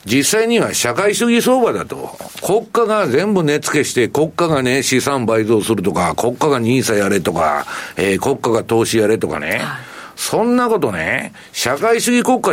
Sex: male